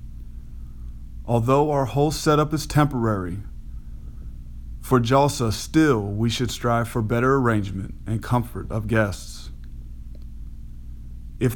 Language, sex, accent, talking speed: English, male, American, 105 wpm